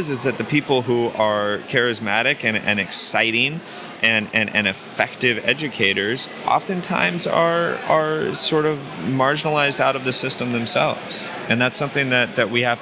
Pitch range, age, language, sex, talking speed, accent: 95-115 Hz, 30-49, English, male, 155 wpm, American